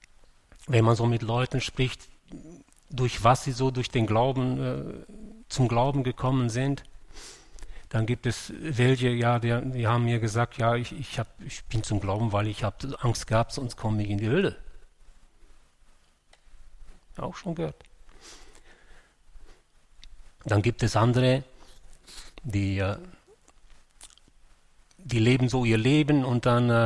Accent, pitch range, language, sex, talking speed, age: German, 105-140 Hz, German, male, 140 wpm, 40-59